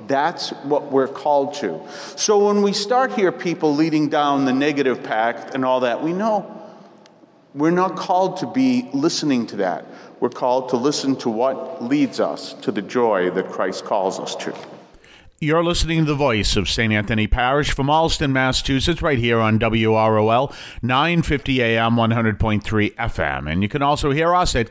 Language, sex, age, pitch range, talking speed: English, male, 40-59, 105-155 Hz, 170 wpm